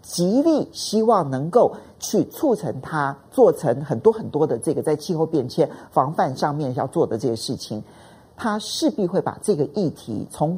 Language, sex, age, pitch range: Chinese, male, 50-69, 145-220 Hz